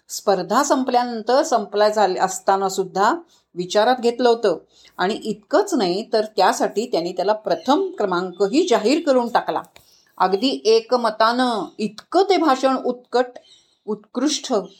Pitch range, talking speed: 195-265 Hz, 110 wpm